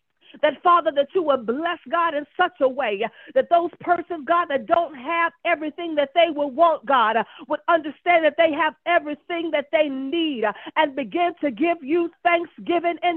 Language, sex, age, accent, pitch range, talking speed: English, female, 40-59, American, 305-370 Hz, 180 wpm